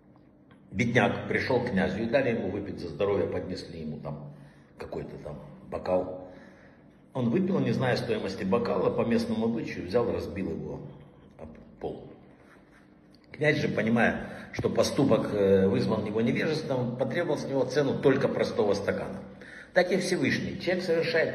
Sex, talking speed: male, 140 wpm